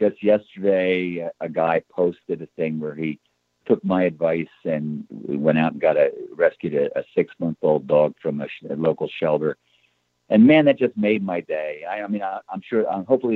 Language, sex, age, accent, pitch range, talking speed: English, male, 60-79, American, 75-100 Hz, 200 wpm